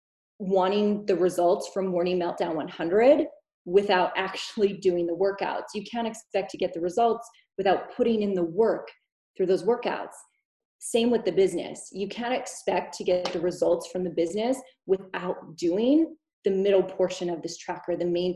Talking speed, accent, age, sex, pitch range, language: 165 wpm, American, 20-39, female, 180-235 Hz, English